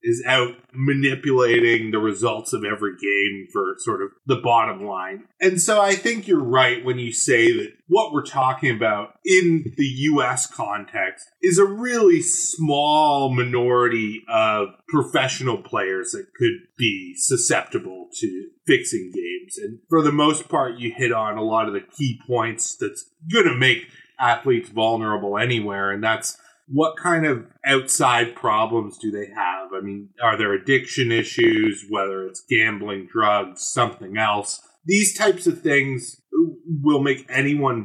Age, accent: 30-49, American